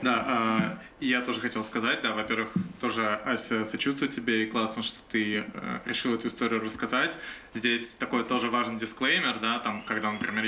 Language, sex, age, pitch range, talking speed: Russian, male, 20-39, 115-125 Hz, 170 wpm